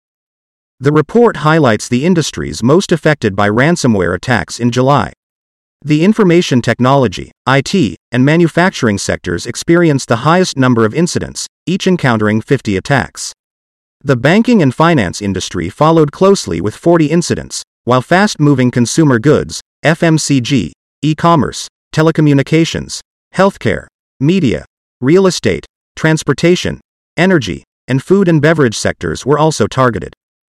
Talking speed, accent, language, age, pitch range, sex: 120 wpm, American, English, 40-59, 115-165 Hz, male